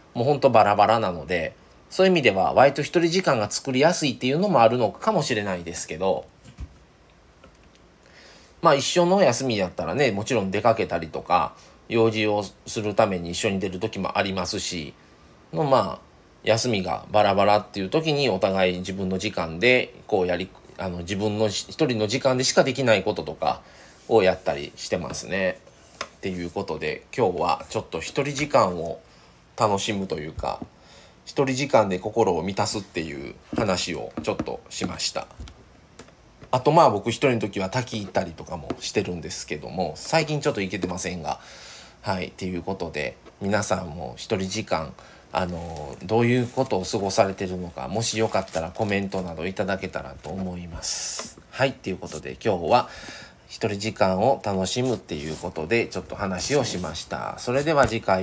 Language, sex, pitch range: Japanese, male, 95-120 Hz